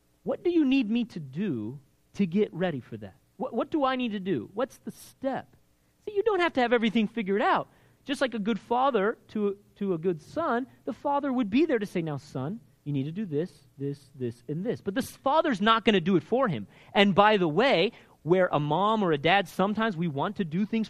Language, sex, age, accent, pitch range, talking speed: English, male, 30-49, American, 180-270 Hz, 245 wpm